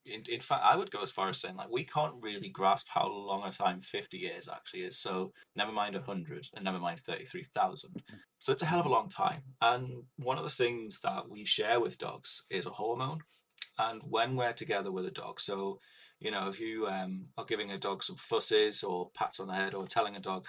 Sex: male